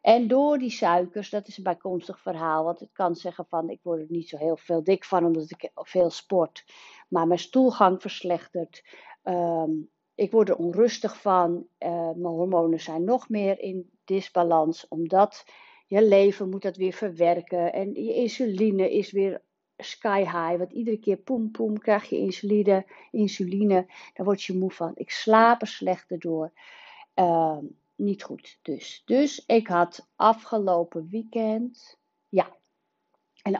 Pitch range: 175-225 Hz